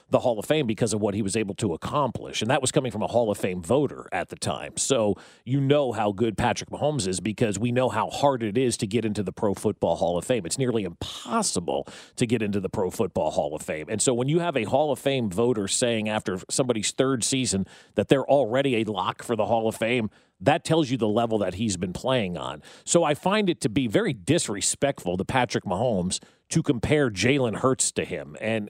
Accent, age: American, 40-59